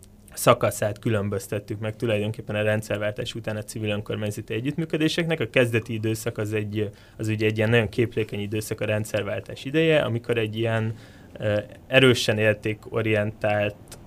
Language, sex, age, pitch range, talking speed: Hungarian, male, 20-39, 105-125 Hz, 135 wpm